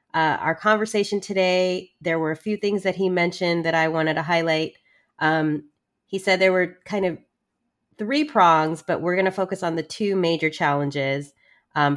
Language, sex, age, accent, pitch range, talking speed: English, female, 30-49, American, 155-185 Hz, 185 wpm